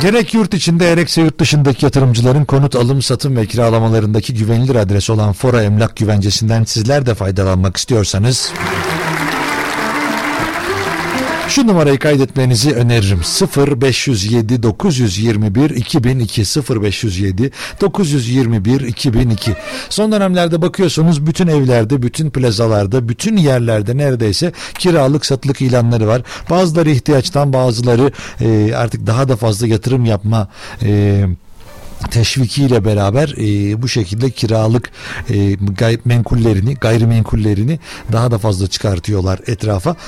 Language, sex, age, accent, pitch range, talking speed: Turkish, male, 60-79, native, 110-145 Hz, 110 wpm